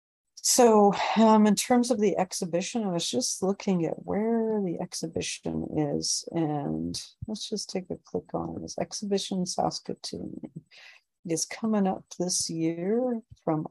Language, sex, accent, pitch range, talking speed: English, female, American, 145-185 Hz, 140 wpm